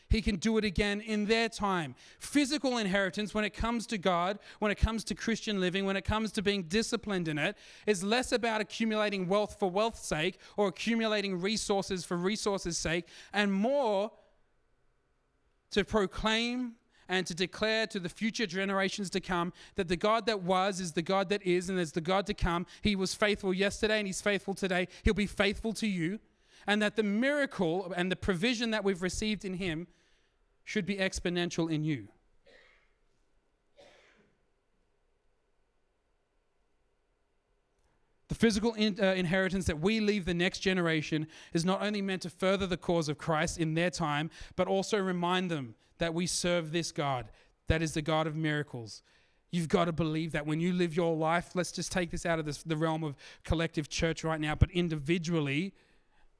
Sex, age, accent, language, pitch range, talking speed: male, 30-49, Australian, English, 170-210 Hz, 175 wpm